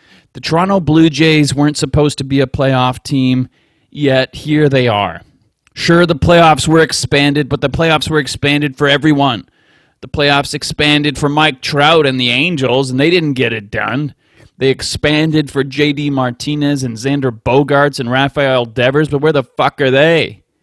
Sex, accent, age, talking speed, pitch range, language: male, American, 30-49, 170 wpm, 130-155 Hz, English